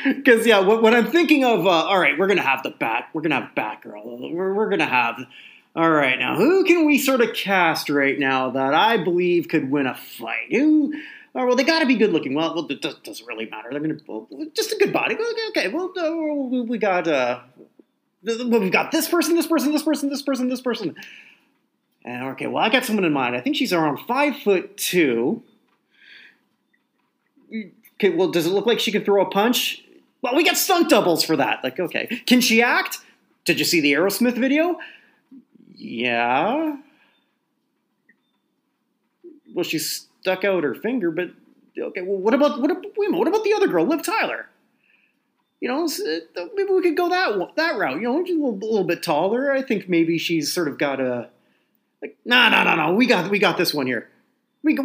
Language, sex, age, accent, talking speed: English, male, 30-49, American, 200 wpm